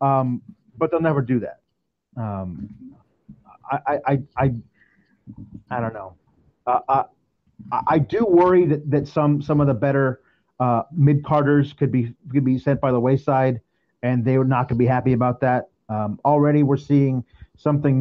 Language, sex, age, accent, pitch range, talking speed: English, male, 30-49, American, 125-155 Hz, 165 wpm